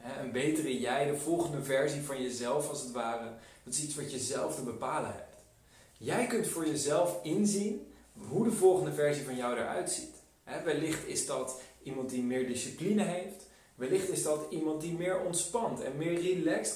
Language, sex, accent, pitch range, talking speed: Dutch, male, Dutch, 125-180 Hz, 185 wpm